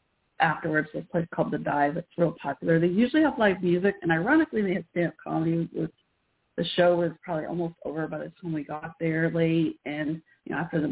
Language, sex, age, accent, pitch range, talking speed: English, female, 30-49, American, 150-195 Hz, 215 wpm